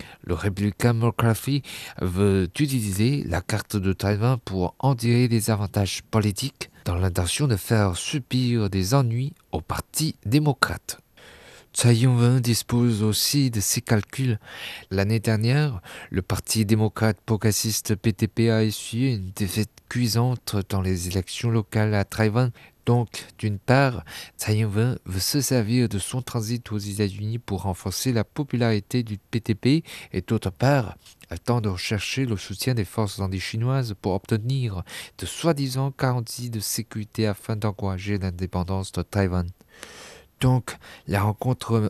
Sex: male